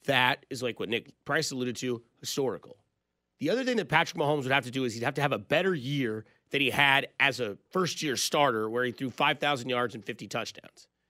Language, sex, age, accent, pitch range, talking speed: English, male, 30-49, American, 105-150 Hz, 225 wpm